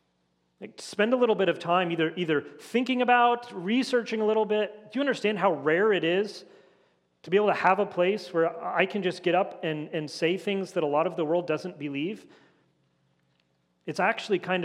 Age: 40-59